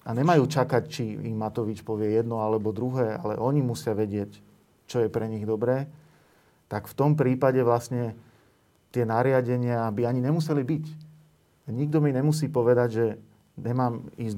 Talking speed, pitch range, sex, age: 155 wpm, 110-130 Hz, male, 40-59